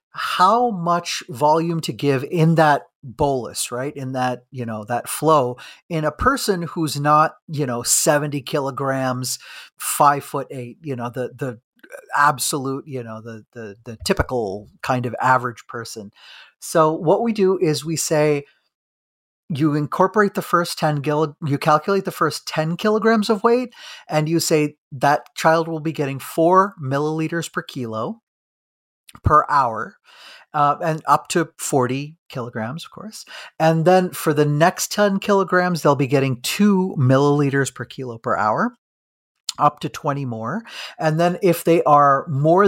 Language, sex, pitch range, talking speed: English, male, 125-170 Hz, 155 wpm